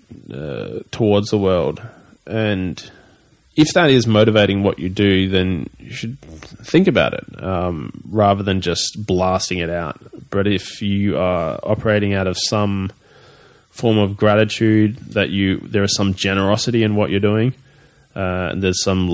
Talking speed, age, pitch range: 155 wpm, 20-39, 95-110 Hz